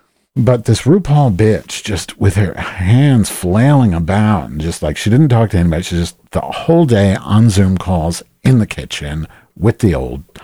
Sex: male